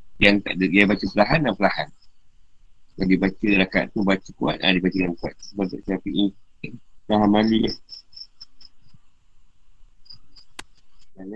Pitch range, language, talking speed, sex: 95-110 Hz, Malay, 125 wpm, male